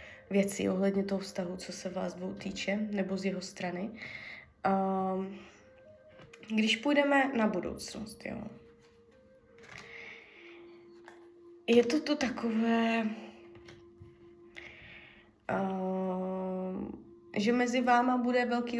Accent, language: native, Czech